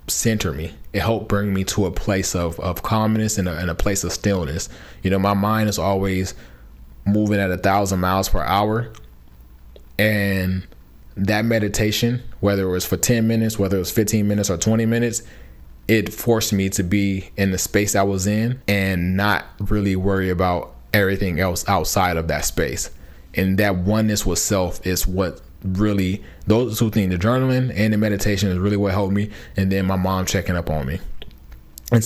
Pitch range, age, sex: 90-110 Hz, 20-39, male